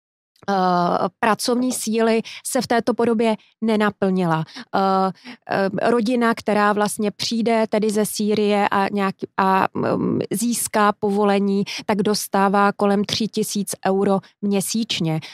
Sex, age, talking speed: female, 30-49, 100 wpm